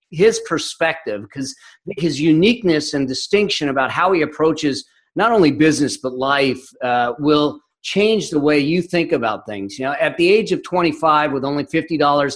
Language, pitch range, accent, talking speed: English, 140-175 Hz, American, 175 wpm